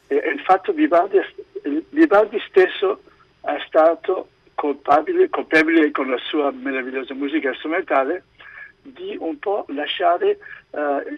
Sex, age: male, 60-79